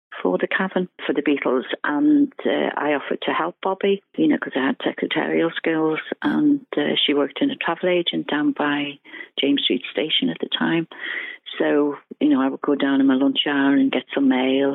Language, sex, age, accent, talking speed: English, female, 40-59, British, 210 wpm